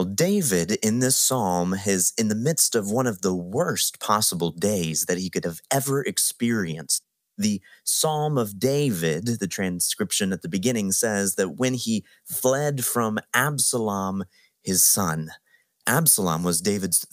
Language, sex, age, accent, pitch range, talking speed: English, male, 30-49, American, 95-135 Hz, 145 wpm